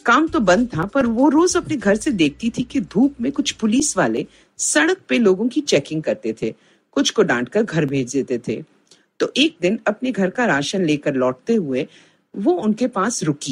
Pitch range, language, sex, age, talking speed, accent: 165-270 Hz, Hindi, female, 50-69, 140 wpm, native